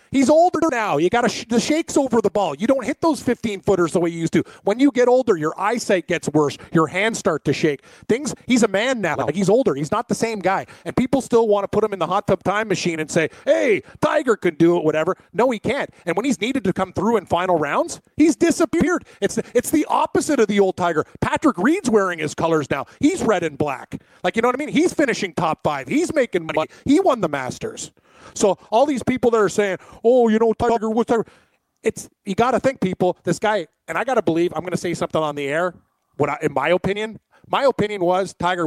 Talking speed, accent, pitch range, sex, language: 250 wpm, American, 165-230 Hz, male, English